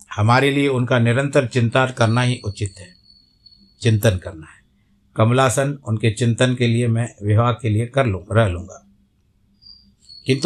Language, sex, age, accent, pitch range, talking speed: Hindi, male, 60-79, native, 105-130 Hz, 150 wpm